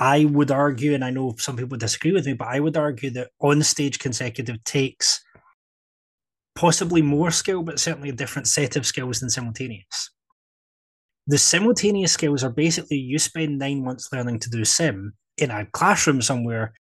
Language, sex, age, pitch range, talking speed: English, male, 20-39, 130-160 Hz, 175 wpm